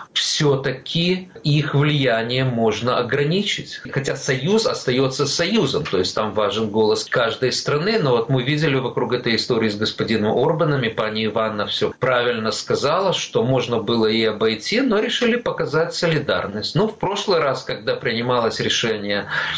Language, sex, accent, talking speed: Russian, male, native, 145 wpm